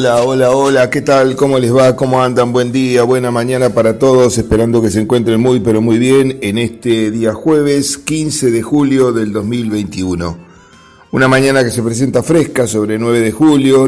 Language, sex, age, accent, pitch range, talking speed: Spanish, male, 40-59, Argentinian, 110-135 Hz, 185 wpm